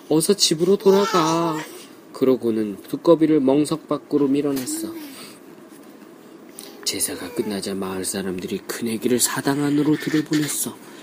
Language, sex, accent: Korean, male, native